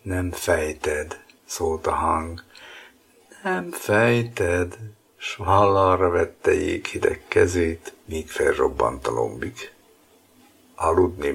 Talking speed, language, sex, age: 95 wpm, Hungarian, male, 60-79